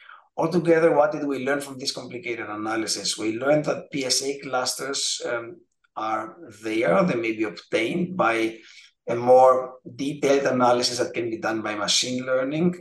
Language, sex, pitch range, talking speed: English, male, 115-140 Hz, 155 wpm